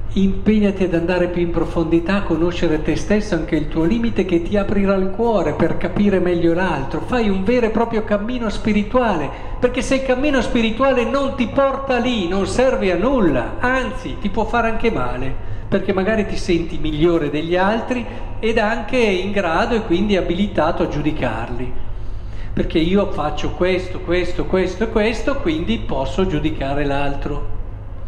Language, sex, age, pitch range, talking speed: Italian, male, 50-69, 150-220 Hz, 165 wpm